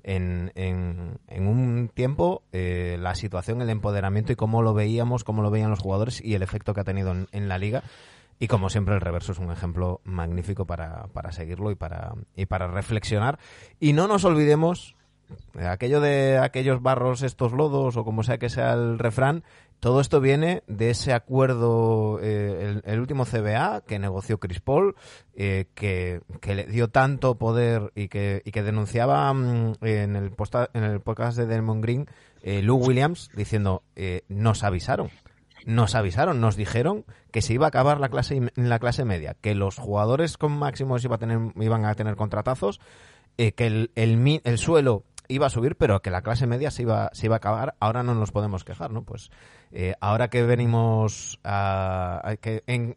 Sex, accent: male, Spanish